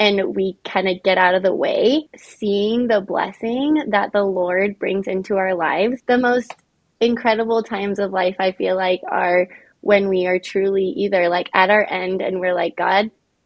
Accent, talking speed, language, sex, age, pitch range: American, 185 wpm, English, female, 20-39, 190-220 Hz